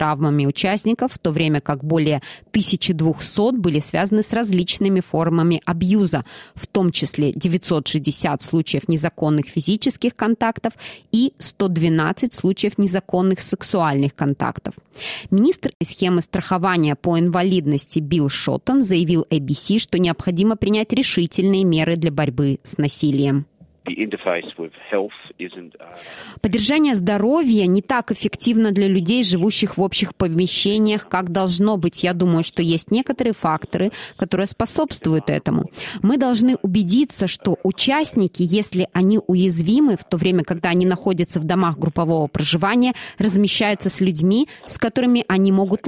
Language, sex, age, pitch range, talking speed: Russian, female, 20-39, 165-215 Hz, 120 wpm